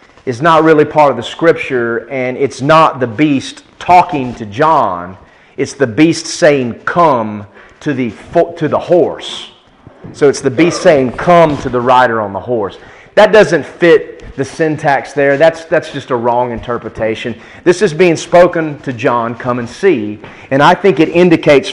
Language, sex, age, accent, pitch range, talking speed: English, male, 30-49, American, 115-160 Hz, 175 wpm